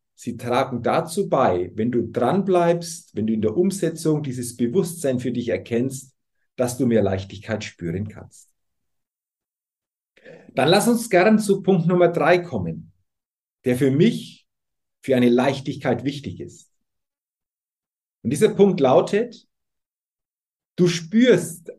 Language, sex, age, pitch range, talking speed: German, male, 50-69, 130-185 Hz, 125 wpm